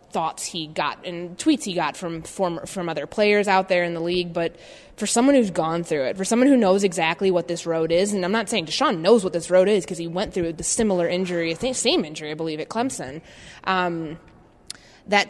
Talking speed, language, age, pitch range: 230 wpm, English, 20-39, 165-200 Hz